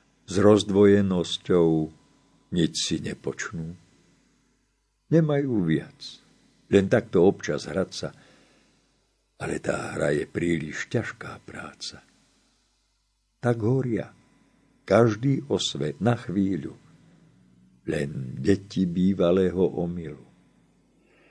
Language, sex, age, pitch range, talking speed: Slovak, male, 50-69, 85-115 Hz, 80 wpm